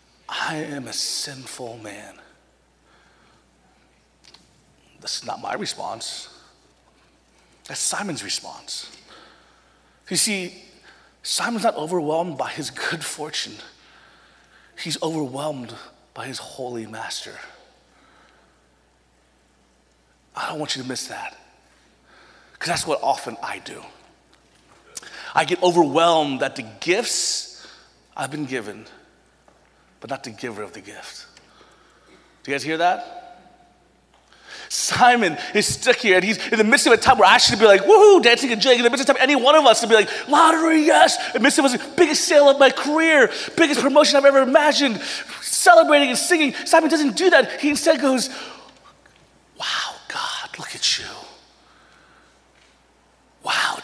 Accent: American